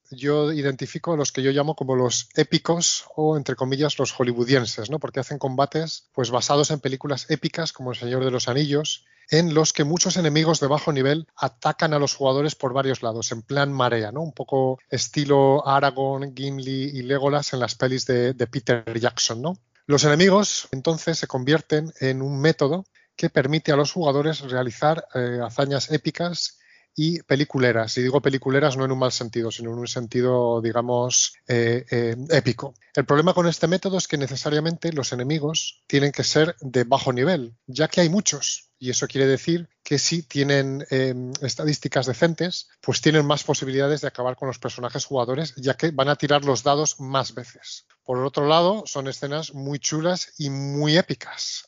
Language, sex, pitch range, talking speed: Spanish, male, 130-155 Hz, 185 wpm